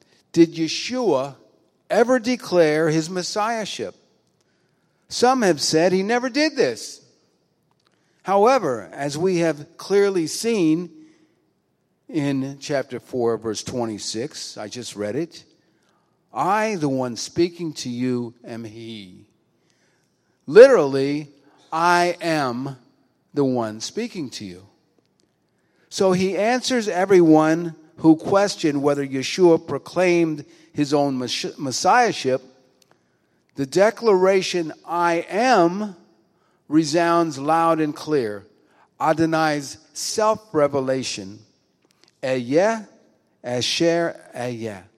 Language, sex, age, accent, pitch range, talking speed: English, male, 50-69, American, 130-180 Hz, 90 wpm